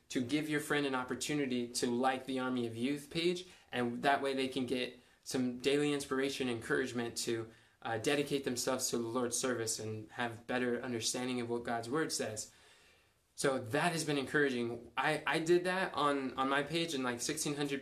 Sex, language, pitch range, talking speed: male, English, 125-150 Hz, 190 wpm